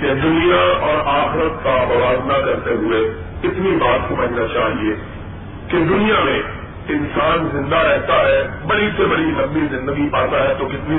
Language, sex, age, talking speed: Urdu, male, 50-69, 145 wpm